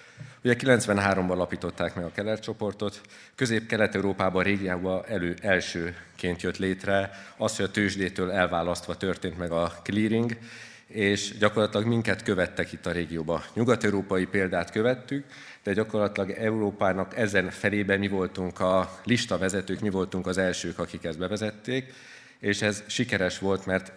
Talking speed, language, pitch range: 140 wpm, Hungarian, 90-105 Hz